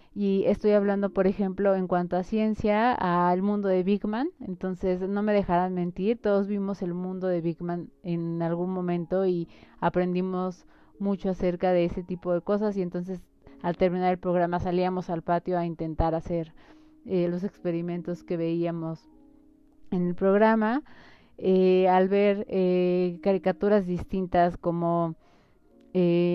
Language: Spanish